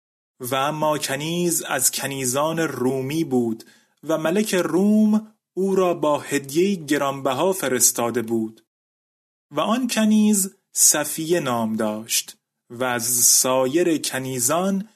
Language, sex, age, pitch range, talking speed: Persian, male, 30-49, 135-180 Hz, 110 wpm